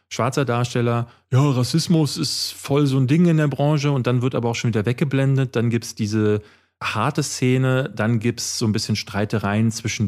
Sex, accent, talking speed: male, German, 200 wpm